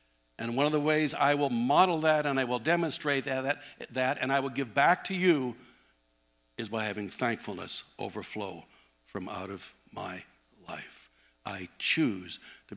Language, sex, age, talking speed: English, male, 60-79, 170 wpm